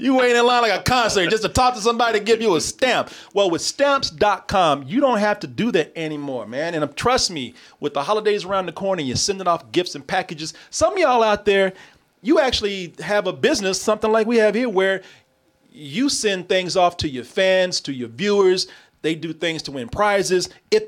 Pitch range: 140-210 Hz